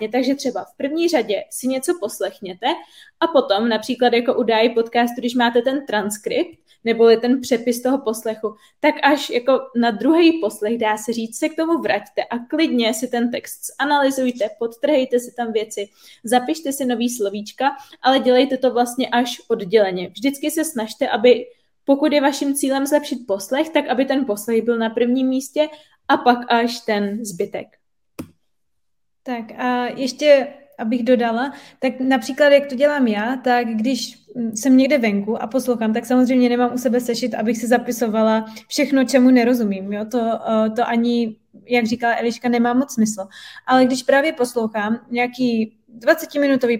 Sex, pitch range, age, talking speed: female, 230-275 Hz, 20-39, 160 wpm